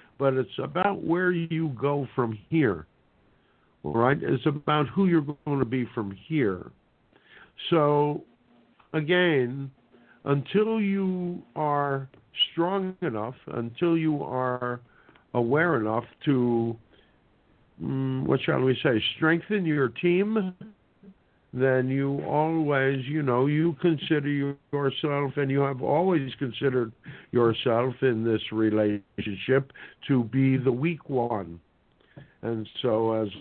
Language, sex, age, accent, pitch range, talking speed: English, male, 60-79, American, 110-145 Hz, 115 wpm